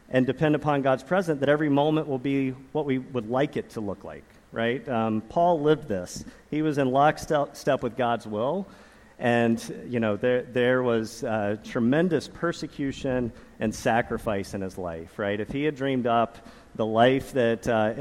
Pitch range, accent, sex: 115-145 Hz, American, male